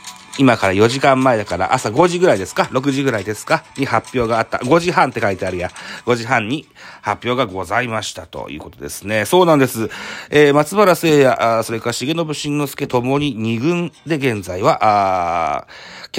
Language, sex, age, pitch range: Japanese, male, 40-59, 95-135 Hz